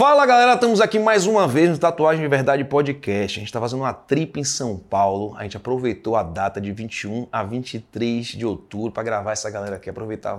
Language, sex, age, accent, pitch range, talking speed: Portuguese, male, 20-39, Brazilian, 110-140 Hz, 220 wpm